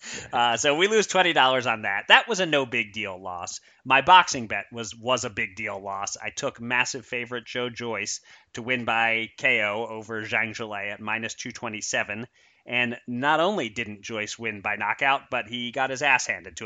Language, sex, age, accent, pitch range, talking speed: English, male, 30-49, American, 105-130 Hz, 195 wpm